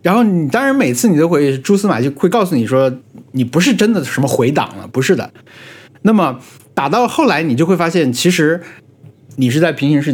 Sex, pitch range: male, 130-180 Hz